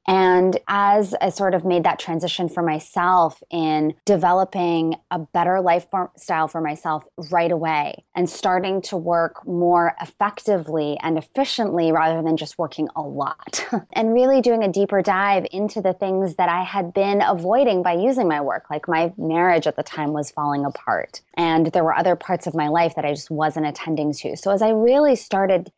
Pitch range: 160-195 Hz